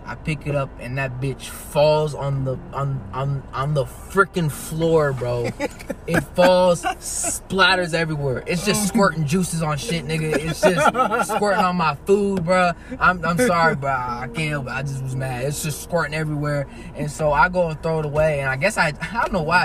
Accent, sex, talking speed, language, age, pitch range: American, male, 200 wpm, English, 20-39, 130-170 Hz